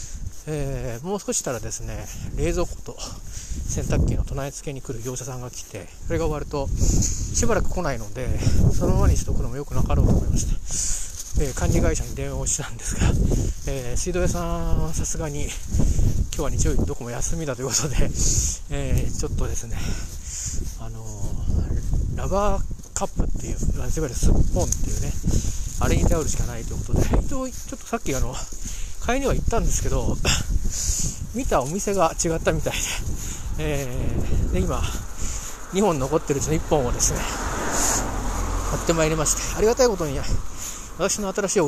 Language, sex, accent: Japanese, male, native